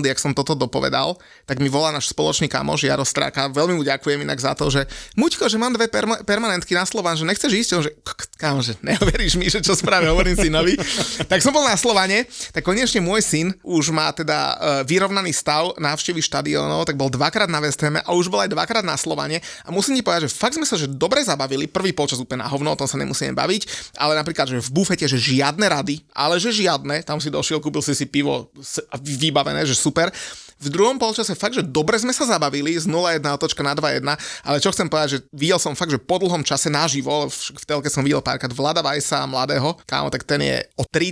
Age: 30-49